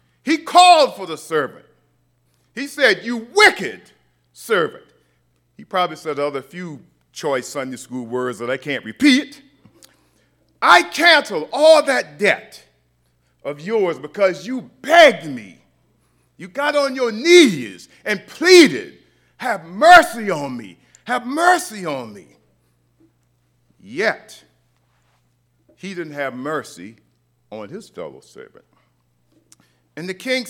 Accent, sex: American, male